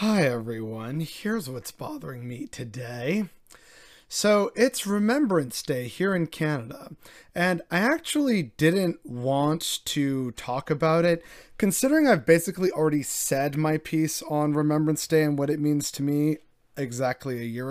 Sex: male